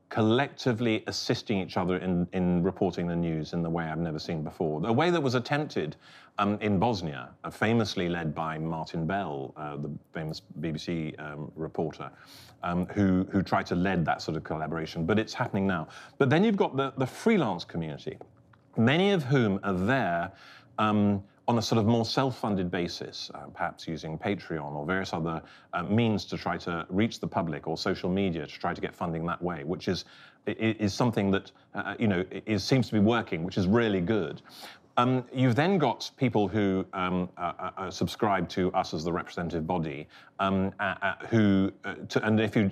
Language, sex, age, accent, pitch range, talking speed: English, male, 40-59, British, 85-115 Hz, 190 wpm